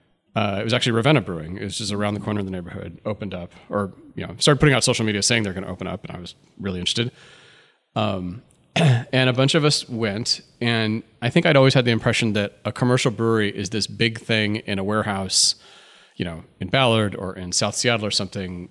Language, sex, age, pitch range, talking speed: English, male, 30-49, 100-120 Hz, 230 wpm